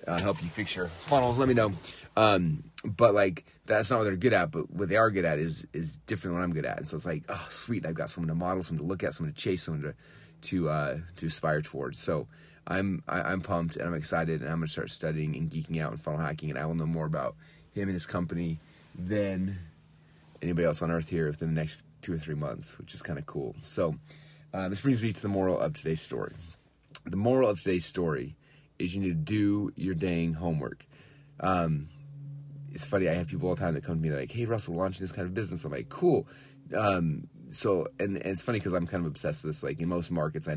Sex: male